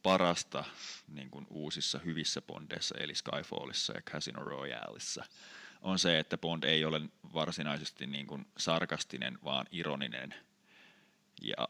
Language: Finnish